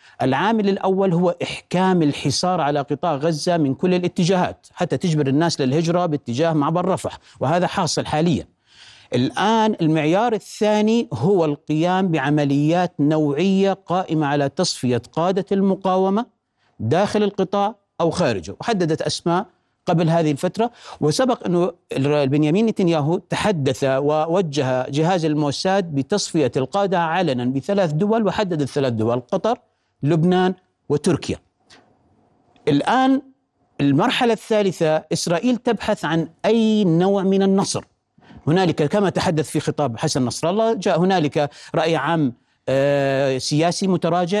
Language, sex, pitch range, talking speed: Arabic, male, 150-195 Hz, 115 wpm